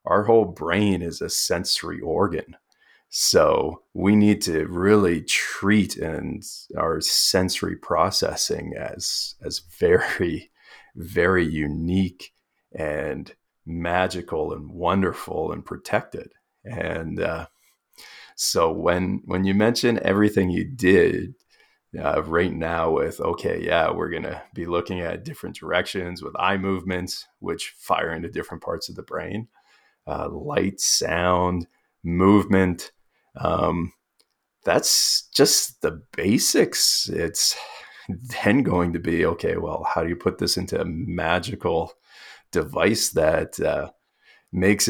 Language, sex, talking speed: English, male, 120 wpm